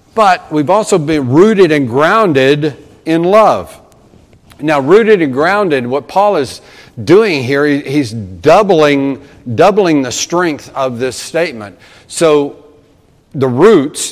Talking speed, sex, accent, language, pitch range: 125 wpm, male, American, English, 135-175 Hz